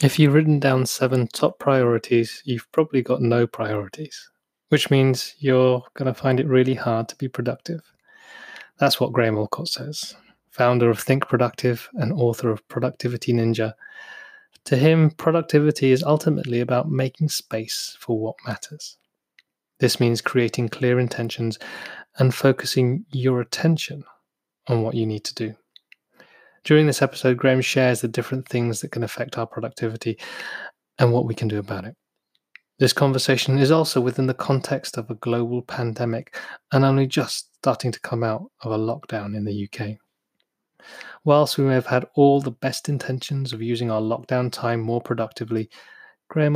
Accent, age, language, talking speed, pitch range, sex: British, 20-39, English, 160 wpm, 120-140 Hz, male